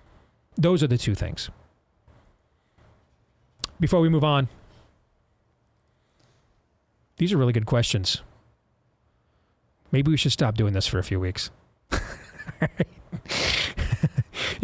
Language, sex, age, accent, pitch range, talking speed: English, male, 40-59, American, 135-170 Hz, 100 wpm